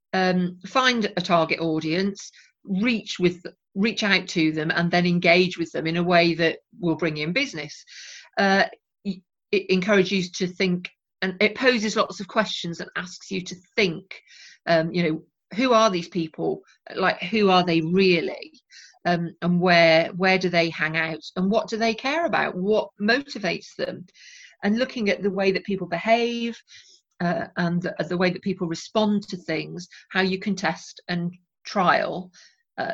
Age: 40-59